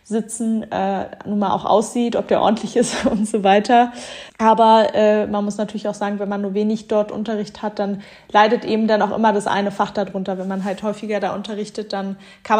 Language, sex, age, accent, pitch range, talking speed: German, female, 20-39, German, 205-230 Hz, 210 wpm